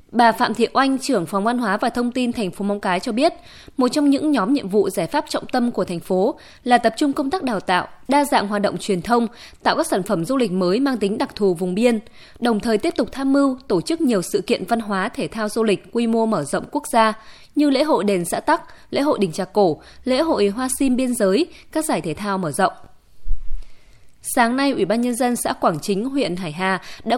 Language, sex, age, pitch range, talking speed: Vietnamese, female, 20-39, 200-260 Hz, 255 wpm